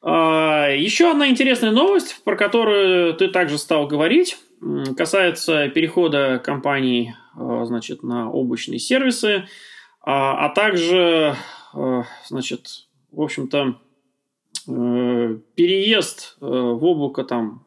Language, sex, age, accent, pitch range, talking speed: Russian, male, 20-39, native, 130-180 Hz, 80 wpm